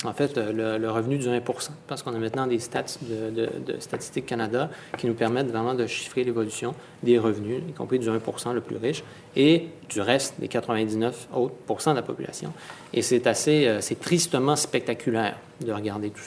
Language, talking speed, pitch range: English, 190 wpm, 115-130 Hz